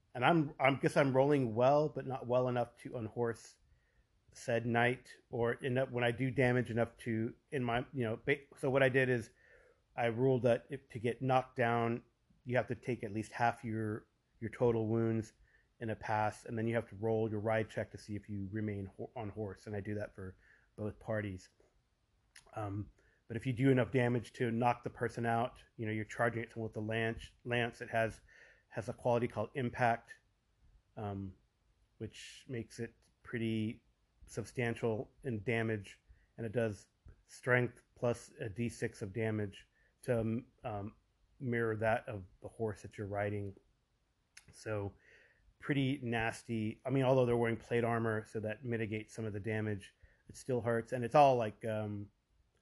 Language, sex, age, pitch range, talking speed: English, male, 30-49, 110-125 Hz, 180 wpm